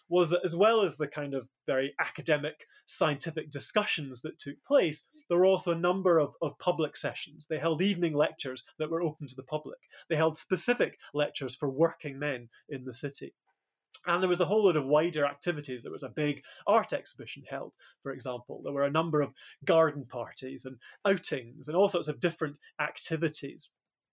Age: 30-49